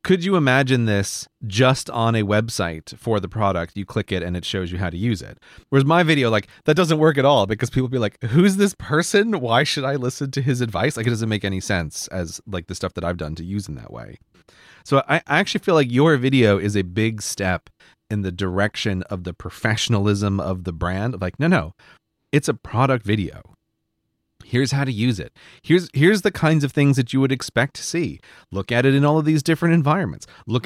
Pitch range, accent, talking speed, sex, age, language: 100-150 Hz, American, 230 wpm, male, 30-49, English